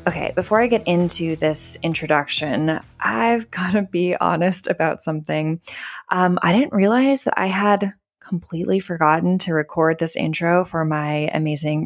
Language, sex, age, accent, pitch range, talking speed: English, female, 20-39, American, 165-220 Hz, 150 wpm